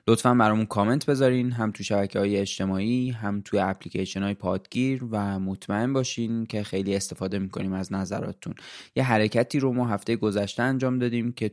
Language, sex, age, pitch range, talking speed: Persian, male, 20-39, 100-120 Hz, 160 wpm